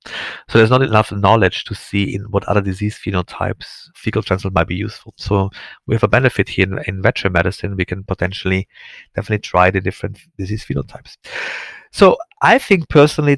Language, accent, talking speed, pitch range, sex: English, German, 180 wpm, 95-115 Hz, male